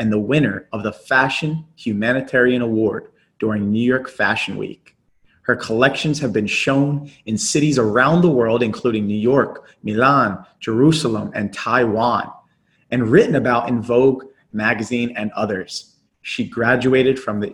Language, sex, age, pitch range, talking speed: English, male, 30-49, 110-140 Hz, 145 wpm